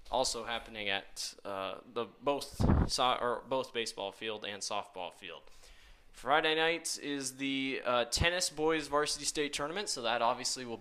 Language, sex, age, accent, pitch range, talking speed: English, male, 10-29, American, 115-140 Hz, 155 wpm